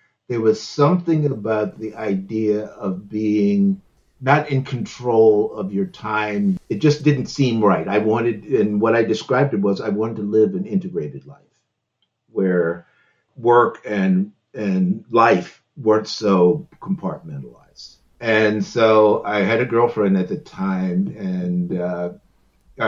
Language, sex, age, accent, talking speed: English, male, 50-69, American, 140 wpm